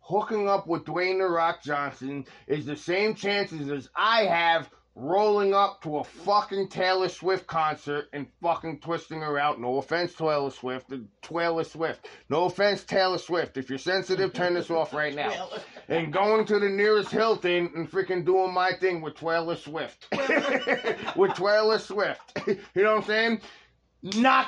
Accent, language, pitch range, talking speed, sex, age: American, English, 150-190 Hz, 170 wpm, male, 30-49